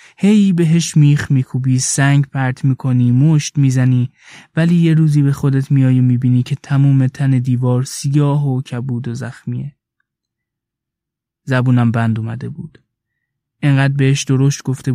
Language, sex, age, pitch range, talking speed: Persian, male, 20-39, 125-145 Hz, 140 wpm